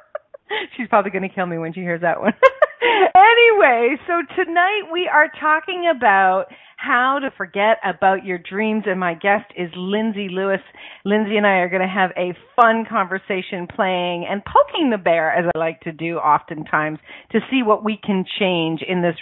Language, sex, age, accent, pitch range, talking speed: English, female, 40-59, American, 185-265 Hz, 185 wpm